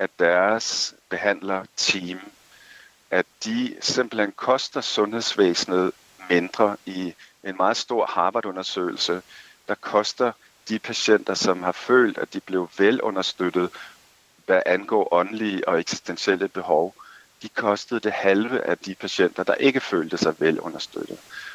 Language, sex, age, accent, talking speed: Danish, male, 50-69, native, 120 wpm